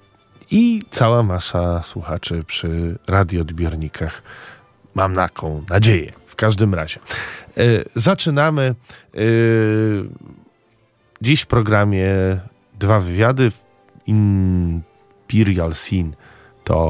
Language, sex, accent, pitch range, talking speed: Polish, male, native, 90-115 Hz, 80 wpm